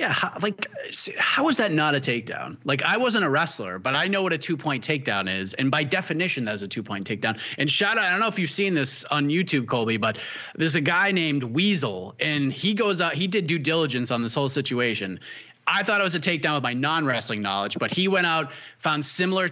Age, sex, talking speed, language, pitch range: 30-49, male, 230 wpm, English, 140-190 Hz